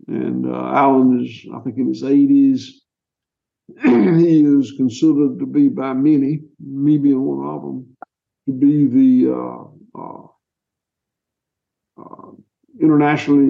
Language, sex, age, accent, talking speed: English, male, 60-79, American, 120 wpm